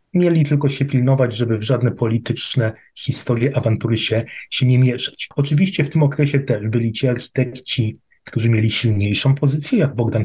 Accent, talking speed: native, 165 wpm